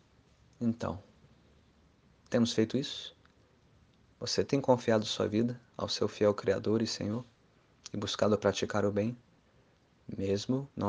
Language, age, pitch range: Portuguese, 20-39, 100-120 Hz